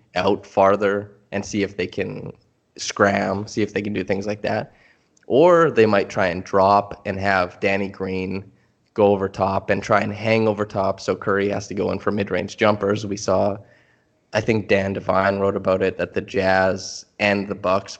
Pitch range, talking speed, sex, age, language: 95-105 Hz, 195 wpm, male, 20-39, English